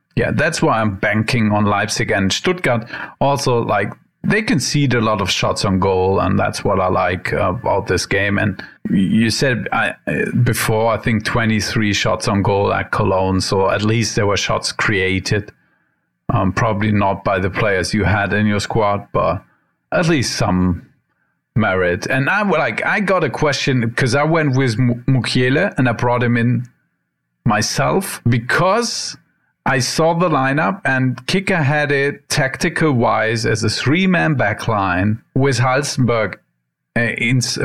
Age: 40-59